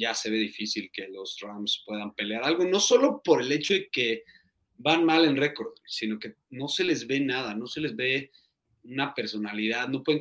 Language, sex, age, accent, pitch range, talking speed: Spanish, male, 30-49, Mexican, 110-145 Hz, 210 wpm